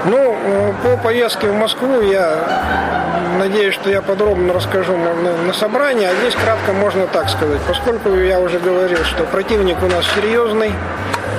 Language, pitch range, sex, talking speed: Russian, 175-210 Hz, male, 160 wpm